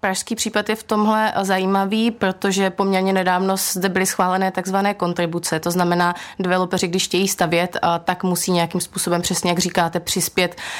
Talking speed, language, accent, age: 155 wpm, Czech, native, 20-39